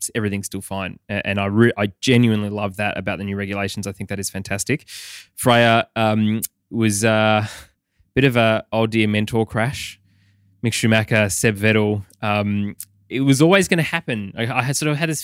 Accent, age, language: Australian, 20-39, English